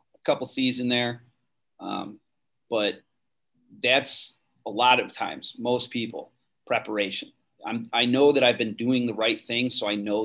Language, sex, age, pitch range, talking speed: English, male, 30-49, 105-125 Hz, 165 wpm